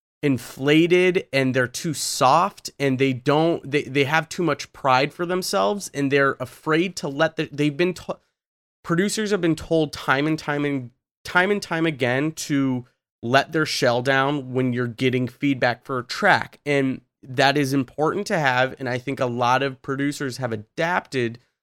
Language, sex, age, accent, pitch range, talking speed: English, male, 30-49, American, 125-155 Hz, 180 wpm